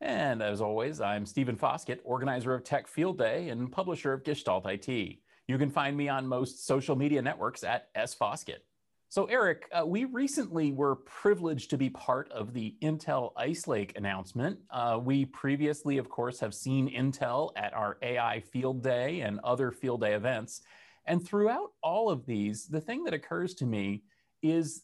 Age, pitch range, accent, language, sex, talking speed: 30-49, 120-155 Hz, American, English, male, 175 wpm